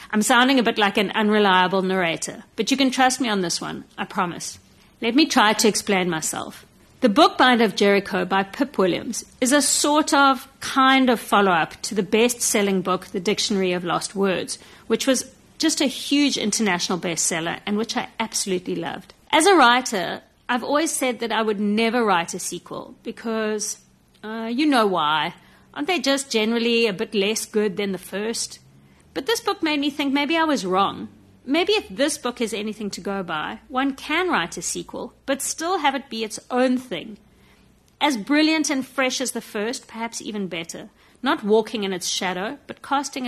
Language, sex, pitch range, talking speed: English, female, 200-265 Hz, 190 wpm